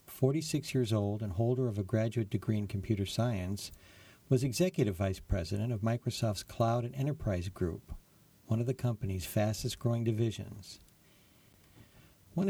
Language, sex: English, male